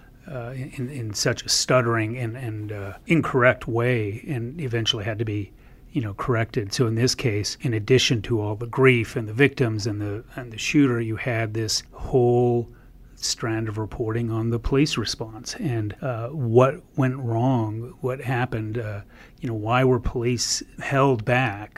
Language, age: English, 30-49